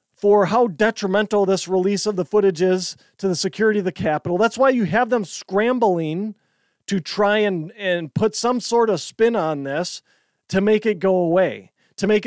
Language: English